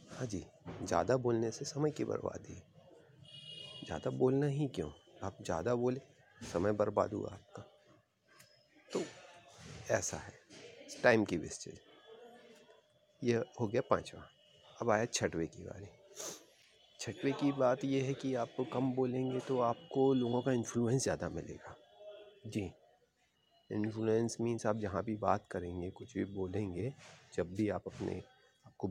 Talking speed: 140 wpm